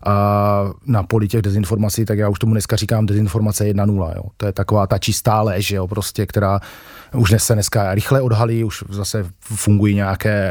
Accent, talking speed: native, 175 wpm